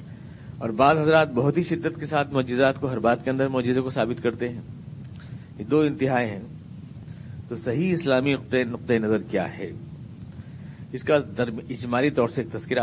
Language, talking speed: Urdu, 175 wpm